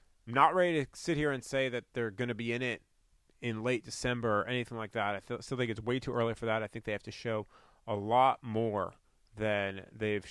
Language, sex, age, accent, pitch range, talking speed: English, male, 30-49, American, 105-130 Hz, 245 wpm